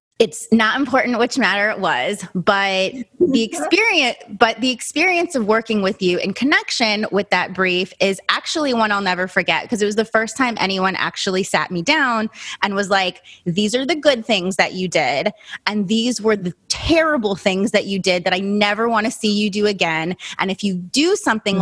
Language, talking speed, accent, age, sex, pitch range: English, 195 wpm, American, 30-49, female, 185-230 Hz